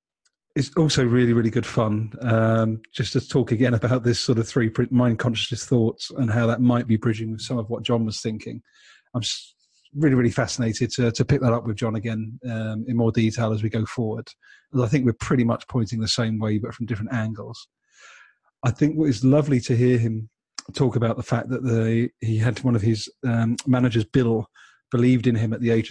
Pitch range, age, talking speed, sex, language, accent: 115-125 Hz, 30-49, 220 wpm, male, English, British